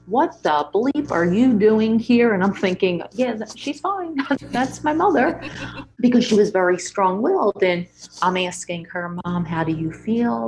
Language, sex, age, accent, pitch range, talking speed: English, female, 30-49, American, 180-255 Hz, 170 wpm